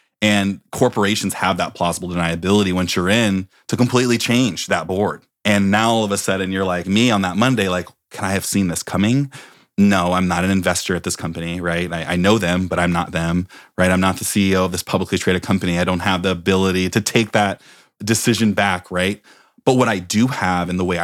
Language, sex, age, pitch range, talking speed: English, male, 30-49, 90-105 Hz, 230 wpm